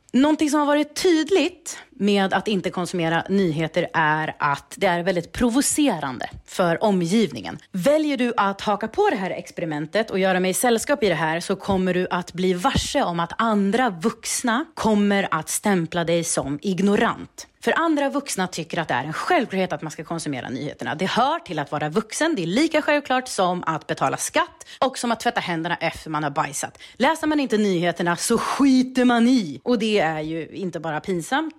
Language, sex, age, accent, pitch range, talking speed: English, female, 30-49, Swedish, 175-255 Hz, 190 wpm